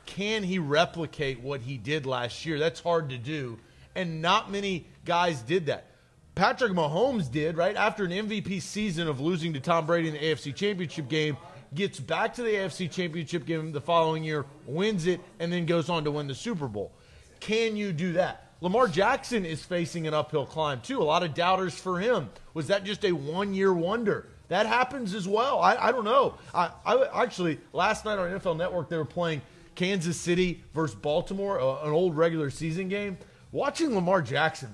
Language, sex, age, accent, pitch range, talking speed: English, male, 30-49, American, 150-185 Hz, 195 wpm